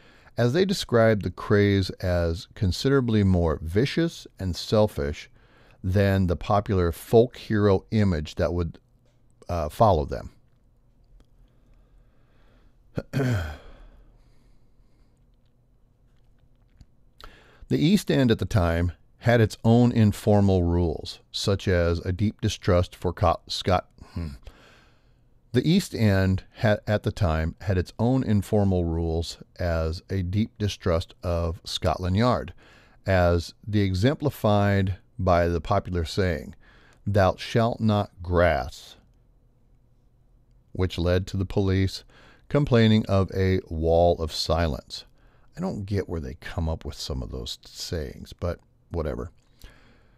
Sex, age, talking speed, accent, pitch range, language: male, 50-69, 115 wpm, American, 90-120 Hz, English